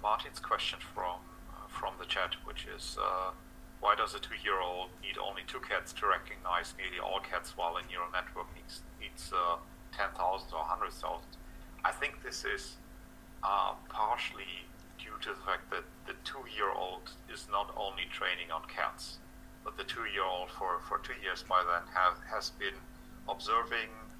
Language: English